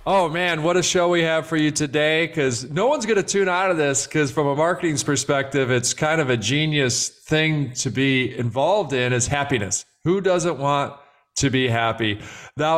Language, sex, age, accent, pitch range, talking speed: English, male, 40-59, American, 130-160 Hz, 200 wpm